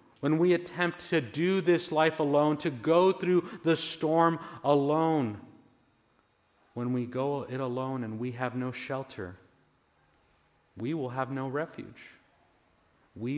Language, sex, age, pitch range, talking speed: English, male, 40-59, 125-175 Hz, 135 wpm